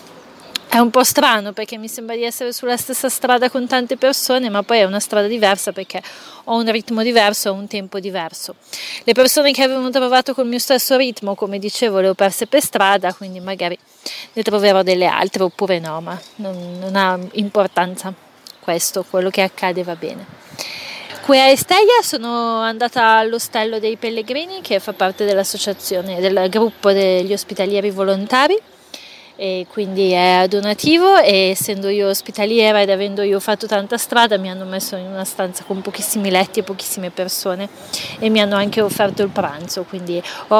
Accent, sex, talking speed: native, female, 175 wpm